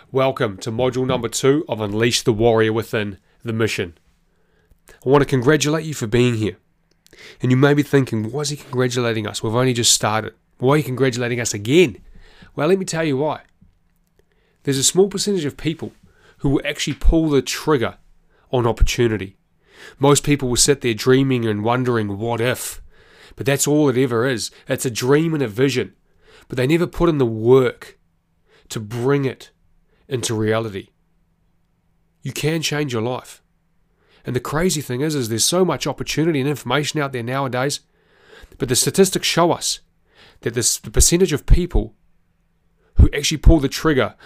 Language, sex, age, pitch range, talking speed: English, male, 30-49, 110-140 Hz, 175 wpm